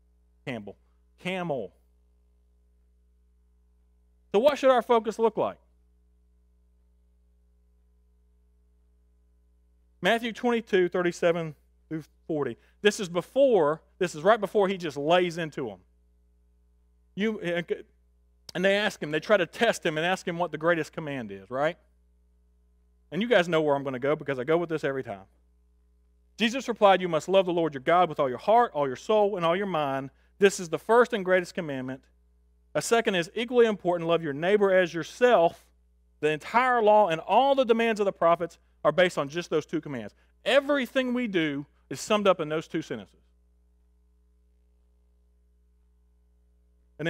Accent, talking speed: American, 160 wpm